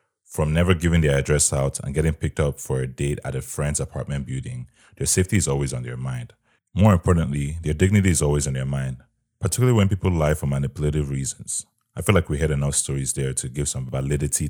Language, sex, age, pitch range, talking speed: English, male, 30-49, 70-90 Hz, 220 wpm